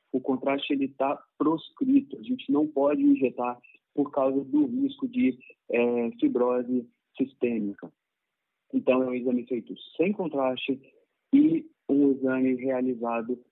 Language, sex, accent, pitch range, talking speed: Portuguese, male, Brazilian, 125-160 Hz, 120 wpm